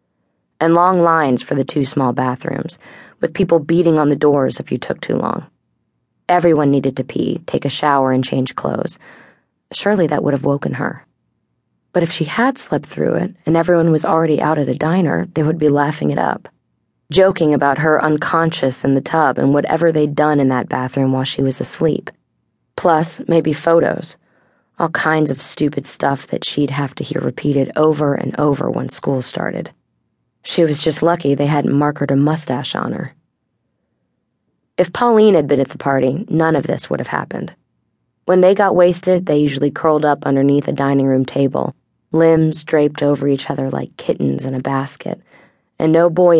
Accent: American